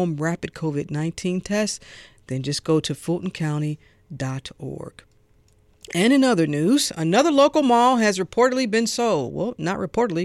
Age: 50-69